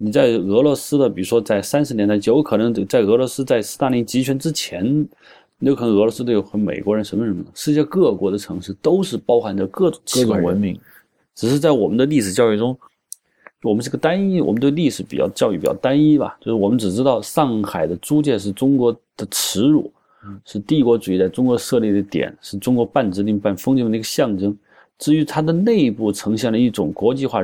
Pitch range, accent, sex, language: 105-140 Hz, native, male, Chinese